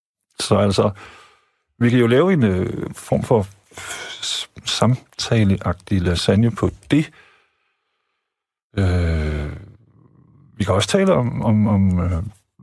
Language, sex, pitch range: Danish, male, 90-115 Hz